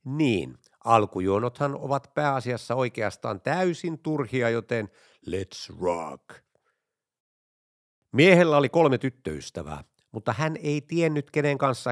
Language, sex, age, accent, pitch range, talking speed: Finnish, male, 60-79, native, 110-145 Hz, 100 wpm